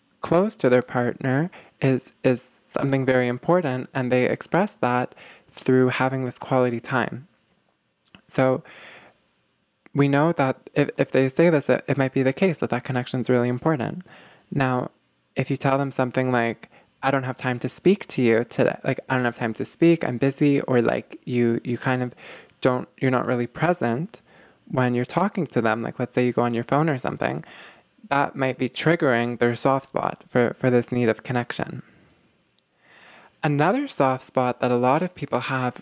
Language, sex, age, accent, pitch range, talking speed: English, male, 20-39, American, 125-150 Hz, 190 wpm